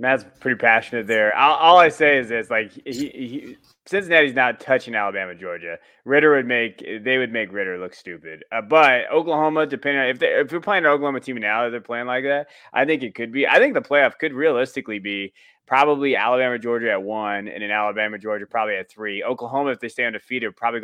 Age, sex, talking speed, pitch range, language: 20-39, male, 220 wpm, 110-145 Hz, English